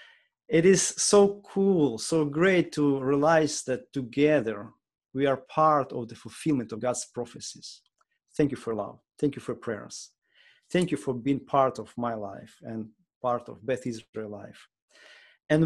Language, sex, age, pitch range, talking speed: English, male, 40-59, 120-155 Hz, 160 wpm